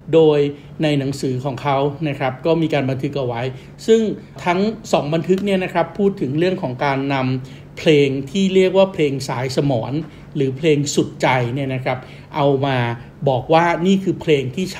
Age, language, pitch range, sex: 60-79, Thai, 130-155 Hz, male